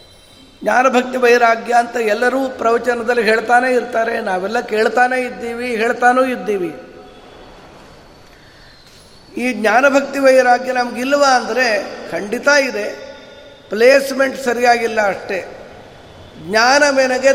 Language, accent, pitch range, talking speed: Kannada, native, 220-260 Hz, 80 wpm